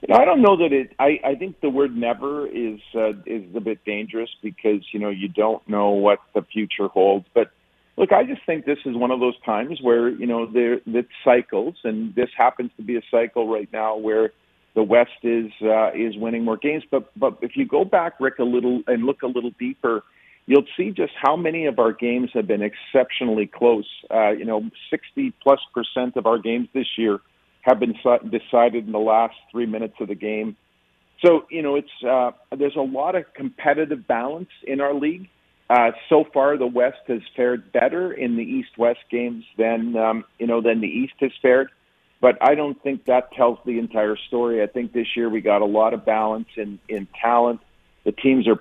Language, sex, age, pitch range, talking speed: English, male, 50-69, 110-130 Hz, 210 wpm